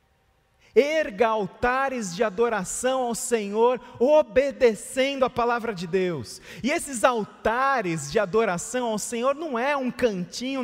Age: 40-59